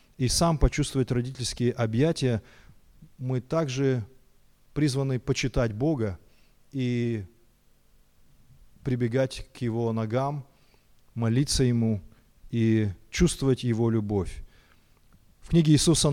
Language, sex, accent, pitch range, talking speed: Russian, male, native, 115-145 Hz, 90 wpm